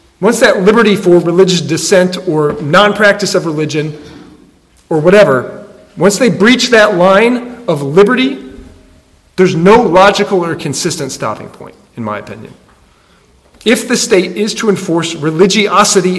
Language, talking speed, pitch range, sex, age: English, 135 wpm, 180-215 Hz, male, 40-59